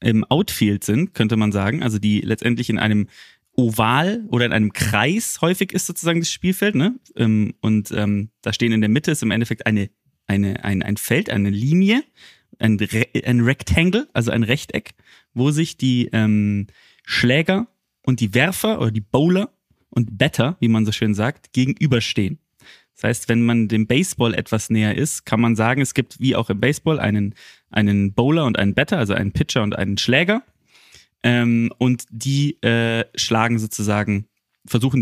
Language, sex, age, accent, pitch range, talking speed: German, male, 20-39, German, 110-140 Hz, 175 wpm